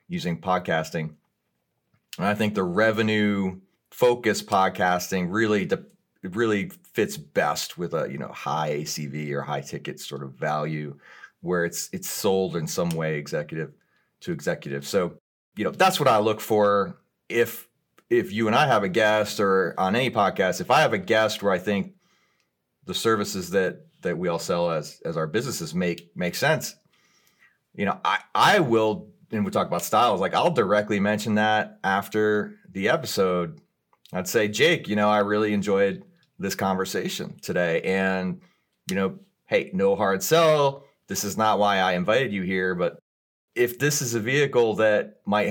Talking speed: 170 wpm